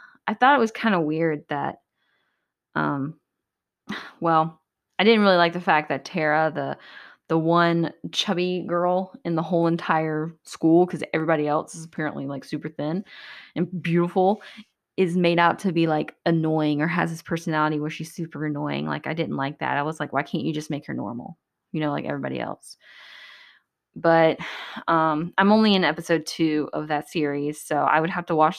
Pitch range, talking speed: 150-175 Hz, 185 wpm